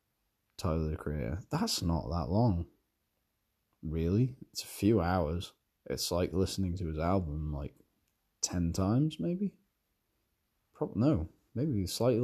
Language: English